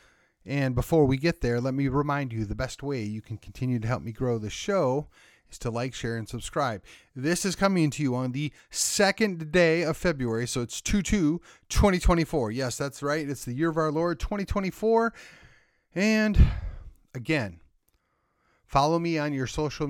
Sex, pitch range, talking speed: male, 125-175 Hz, 175 wpm